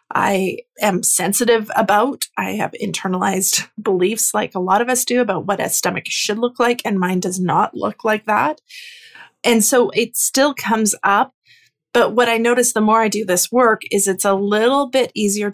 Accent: American